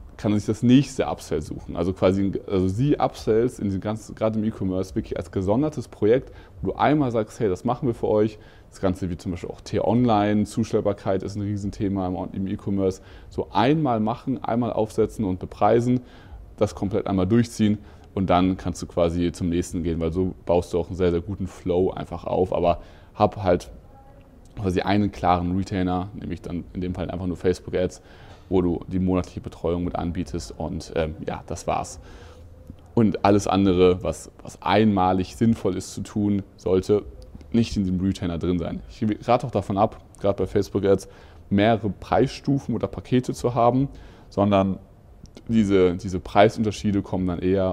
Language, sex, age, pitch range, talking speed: German, male, 30-49, 90-105 Hz, 180 wpm